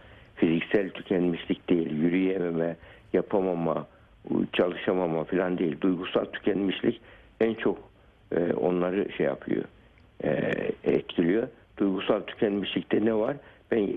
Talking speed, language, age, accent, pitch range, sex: 100 wpm, Turkish, 60-79, native, 90-110 Hz, male